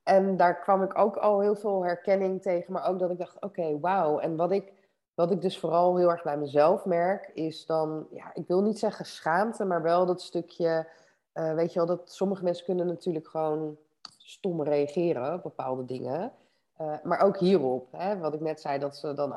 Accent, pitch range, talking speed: Dutch, 155-190 Hz, 200 wpm